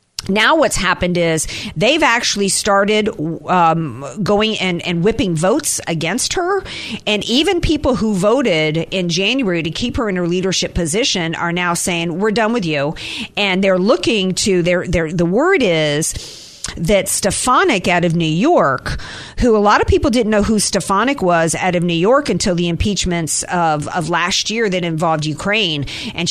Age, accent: 50-69, American